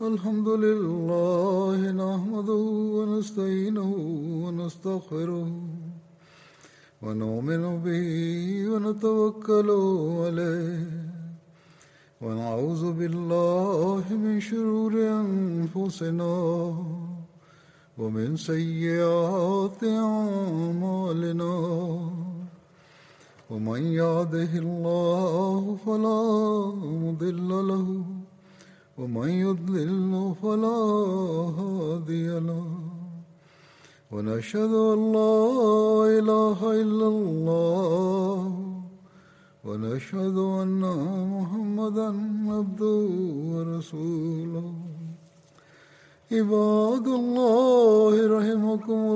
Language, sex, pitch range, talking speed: Arabic, male, 170-210 Hz, 50 wpm